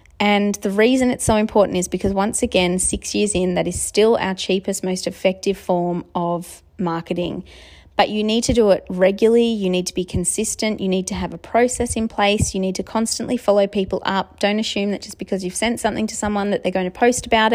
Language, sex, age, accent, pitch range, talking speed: English, female, 30-49, Australian, 185-215 Hz, 225 wpm